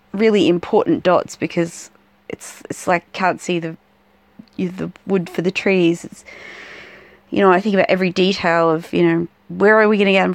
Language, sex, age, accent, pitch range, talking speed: English, female, 20-39, Australian, 170-210 Hz, 185 wpm